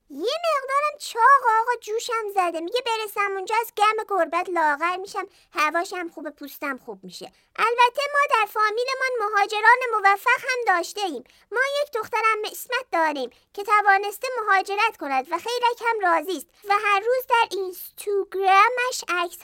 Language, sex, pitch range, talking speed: Persian, male, 340-450 Hz, 150 wpm